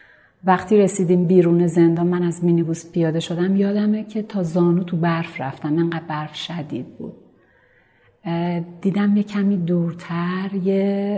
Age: 40-59